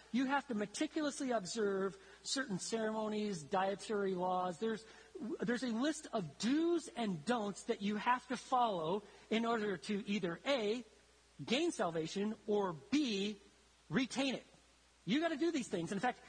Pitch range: 185-235 Hz